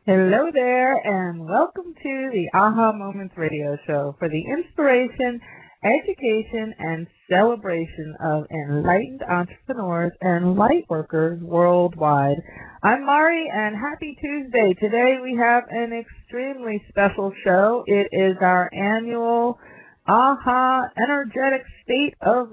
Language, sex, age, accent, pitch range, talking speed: English, female, 30-49, American, 175-225 Hz, 115 wpm